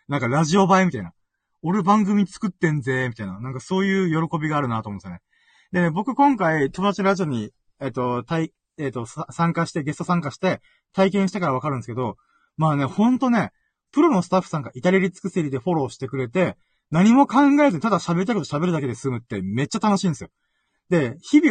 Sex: male